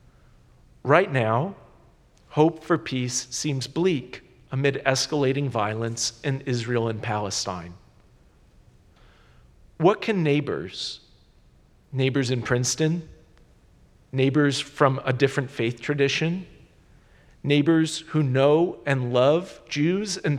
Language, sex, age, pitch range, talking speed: English, male, 40-59, 125-165 Hz, 95 wpm